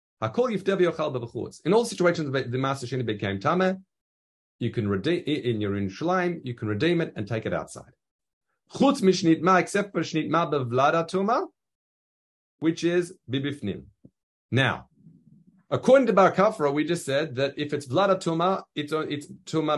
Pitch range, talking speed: 115-185 Hz, 125 wpm